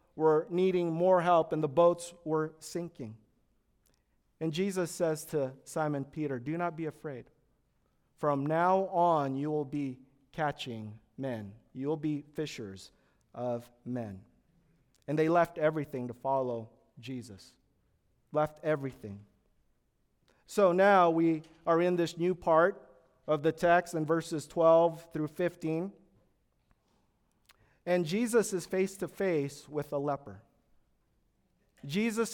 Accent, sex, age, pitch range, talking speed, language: American, male, 40-59, 130-175 Hz, 125 wpm, English